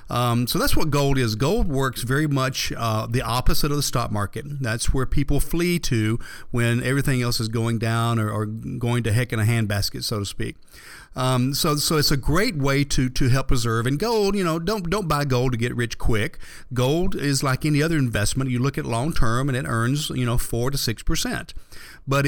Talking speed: 220 wpm